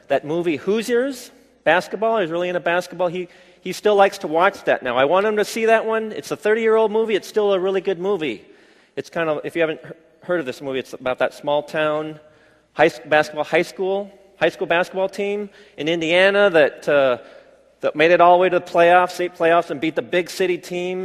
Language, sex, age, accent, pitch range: Korean, male, 40-59, American, 150-190 Hz